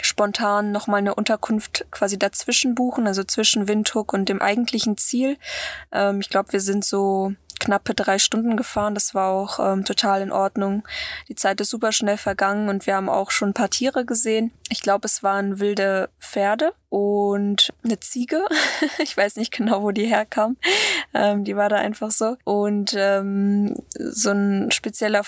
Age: 20-39